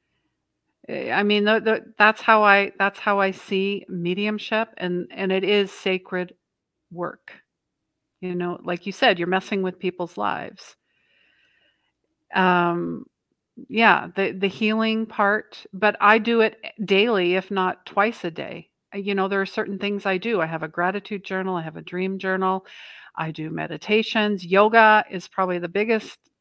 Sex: female